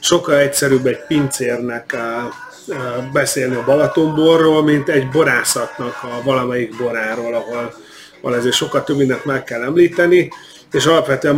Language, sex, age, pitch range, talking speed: Hungarian, male, 30-49, 135-155 Hz, 125 wpm